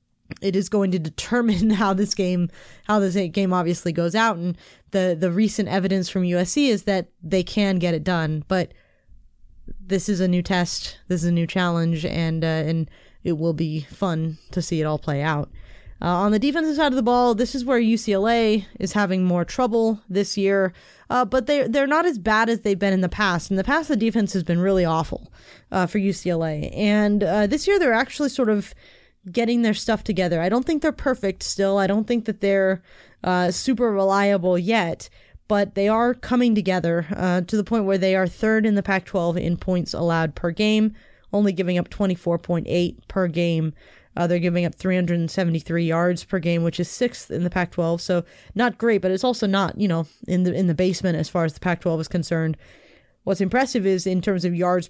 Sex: female